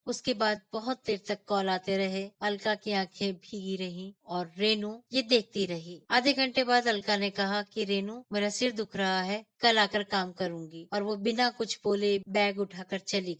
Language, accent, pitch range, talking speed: Hindi, native, 190-220 Hz, 195 wpm